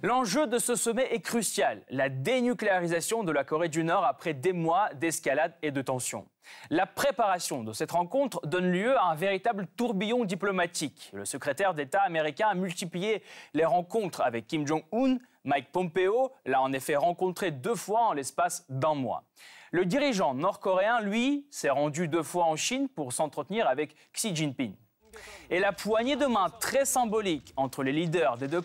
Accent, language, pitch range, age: French, French, 155-225 Hz, 20-39